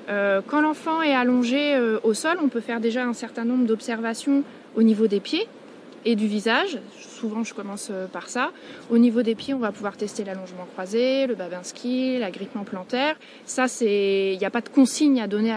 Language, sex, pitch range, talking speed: French, female, 210-255 Hz, 195 wpm